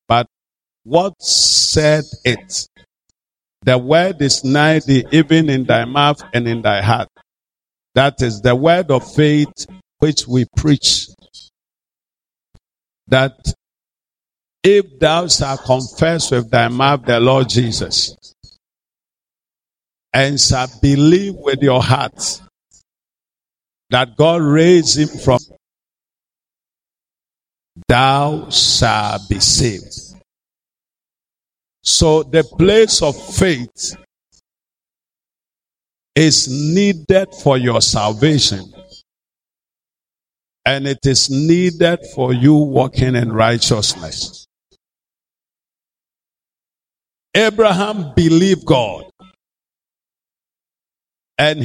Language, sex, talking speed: English, male, 85 wpm